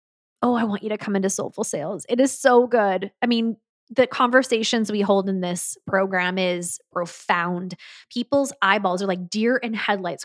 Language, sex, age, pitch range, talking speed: English, female, 20-39, 190-255 Hz, 180 wpm